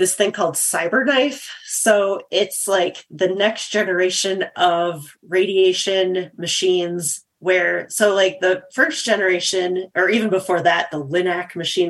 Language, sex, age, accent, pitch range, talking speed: English, female, 30-49, American, 170-195 Hz, 135 wpm